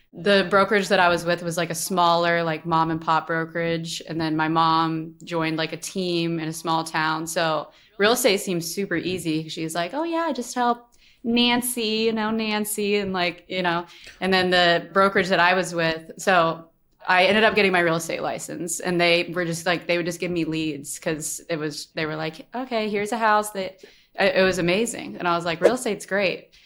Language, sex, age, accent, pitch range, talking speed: English, female, 20-39, American, 160-190 Hz, 220 wpm